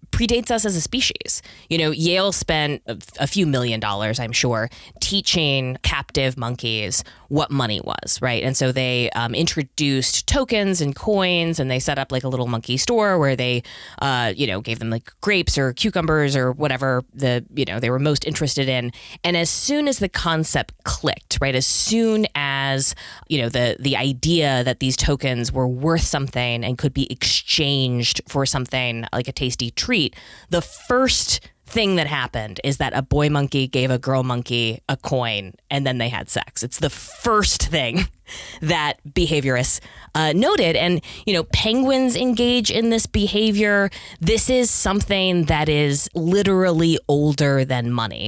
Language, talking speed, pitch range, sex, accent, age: English, 170 wpm, 125-170 Hz, female, American, 20-39